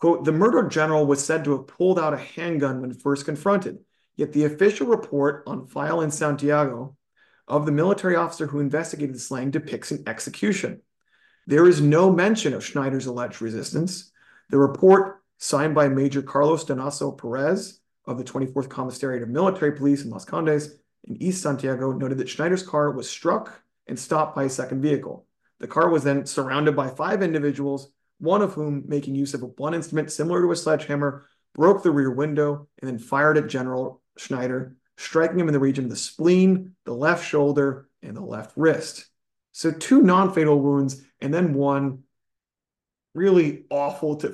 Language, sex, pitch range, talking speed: English, male, 135-160 Hz, 175 wpm